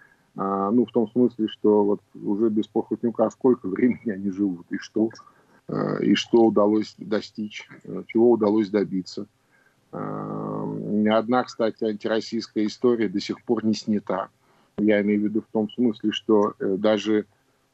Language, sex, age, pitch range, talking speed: Russian, male, 50-69, 100-120 Hz, 130 wpm